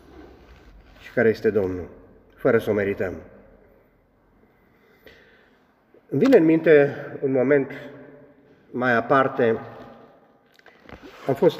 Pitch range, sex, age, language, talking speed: 120-155 Hz, male, 40-59, Romanian, 90 wpm